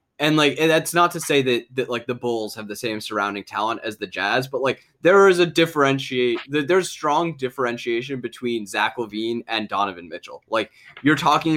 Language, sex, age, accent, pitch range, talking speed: English, male, 10-29, American, 115-140 Hz, 200 wpm